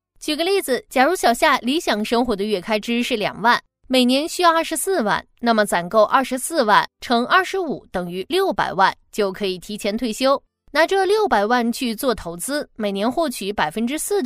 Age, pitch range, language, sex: 20-39, 200-290 Hz, Chinese, female